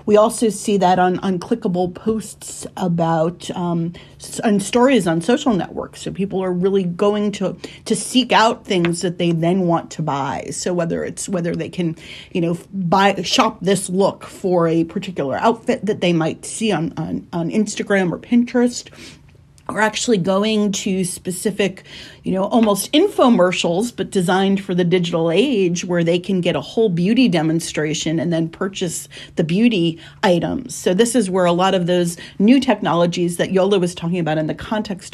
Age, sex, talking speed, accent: 40-59, female, 180 wpm, American